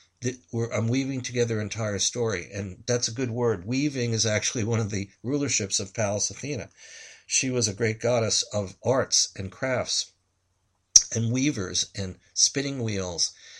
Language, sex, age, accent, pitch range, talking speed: English, male, 60-79, American, 100-120 Hz, 165 wpm